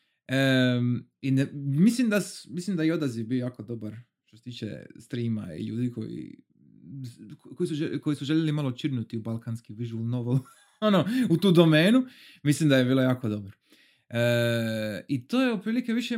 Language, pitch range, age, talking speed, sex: Croatian, 115-150 Hz, 30-49, 145 wpm, male